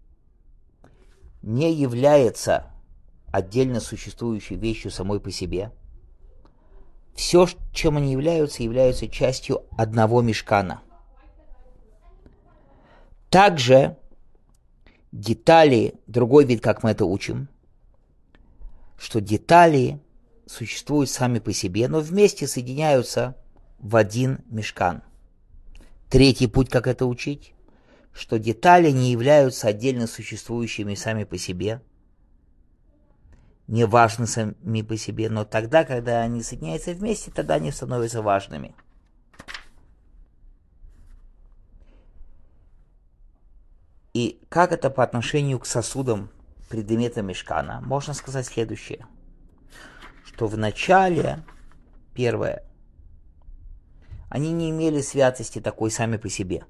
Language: English